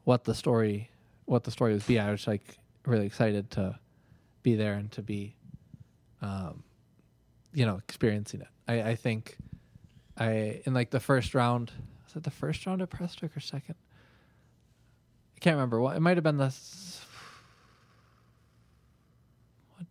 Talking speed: 155 wpm